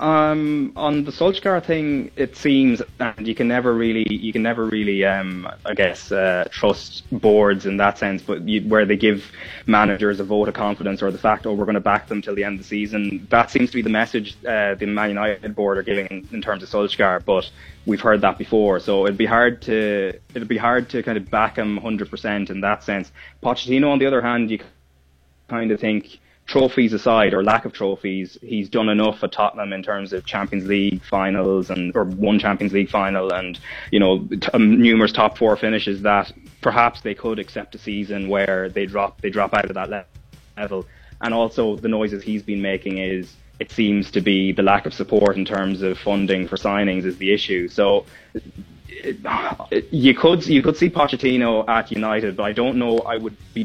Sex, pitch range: male, 100-115 Hz